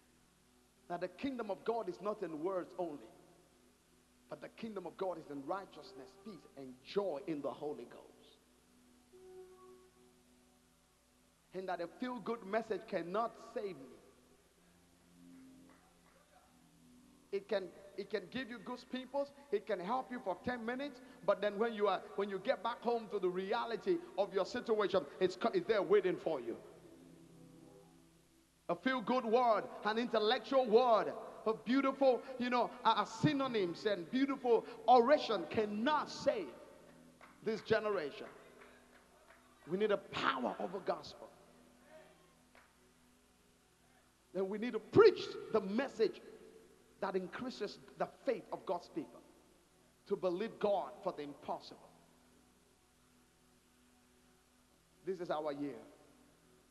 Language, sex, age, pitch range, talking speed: English, male, 50-69, 170-250 Hz, 130 wpm